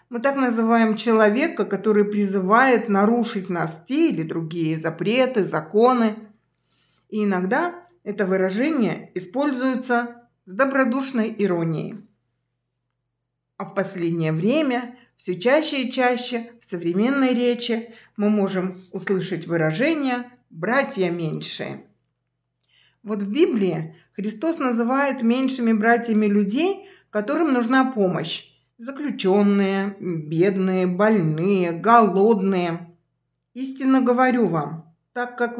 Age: 50-69